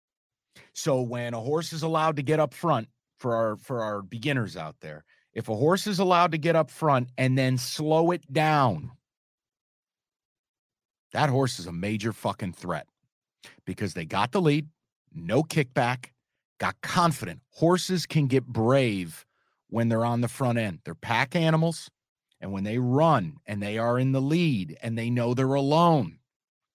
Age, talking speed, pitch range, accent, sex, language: 40-59, 165 wpm, 115-155 Hz, American, male, English